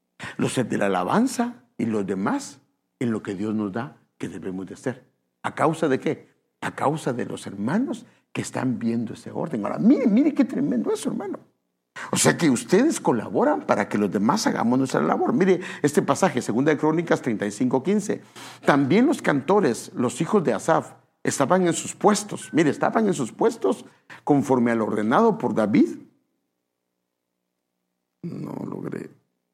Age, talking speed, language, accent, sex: 60-79, 165 wpm, English, Mexican, male